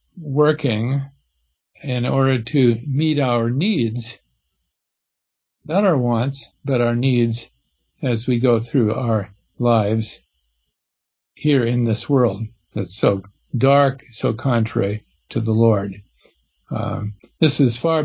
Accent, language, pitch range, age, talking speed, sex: American, English, 115-150 Hz, 50-69, 115 wpm, male